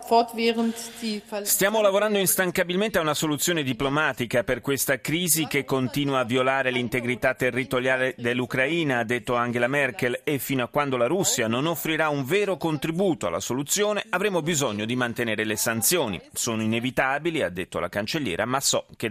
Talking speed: 155 wpm